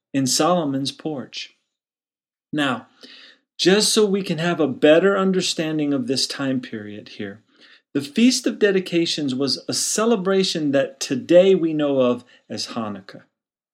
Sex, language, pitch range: male, English, 125-205 Hz